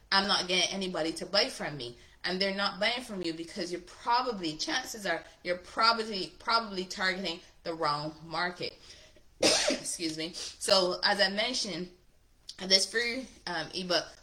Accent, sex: American, female